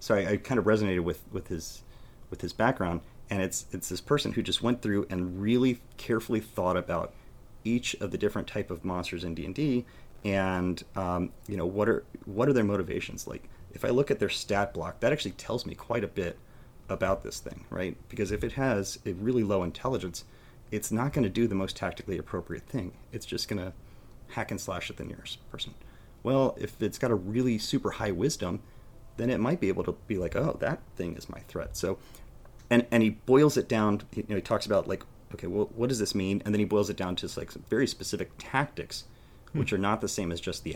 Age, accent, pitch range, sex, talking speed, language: 30-49, American, 90-120 Hz, male, 225 wpm, English